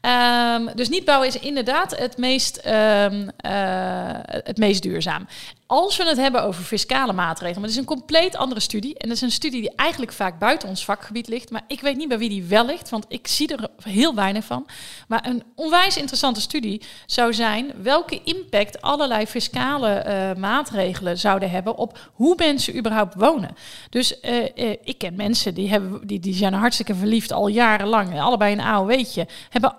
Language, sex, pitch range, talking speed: Dutch, female, 200-255 Hz, 180 wpm